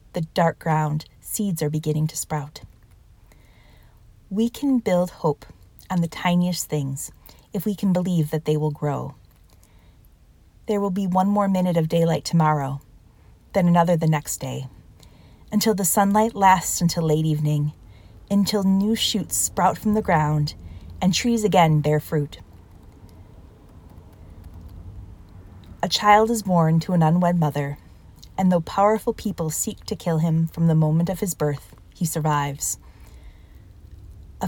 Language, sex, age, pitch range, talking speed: English, female, 20-39, 135-190 Hz, 145 wpm